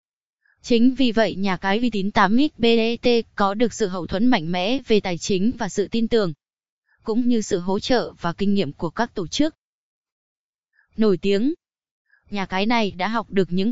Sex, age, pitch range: female, 20-39, 190-230 Hz